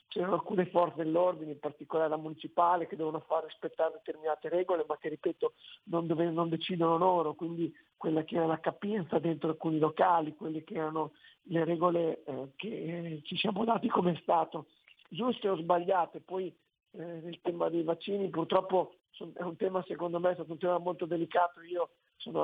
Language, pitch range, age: Italian, 160-180 Hz, 50-69